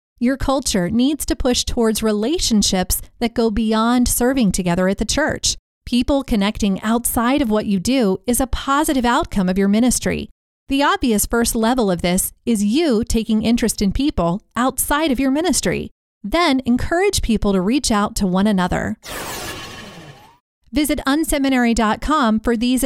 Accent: American